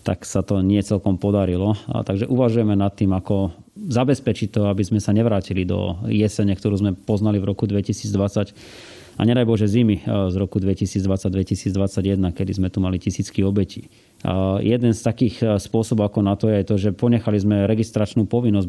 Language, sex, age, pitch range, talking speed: Slovak, male, 30-49, 100-115 Hz, 175 wpm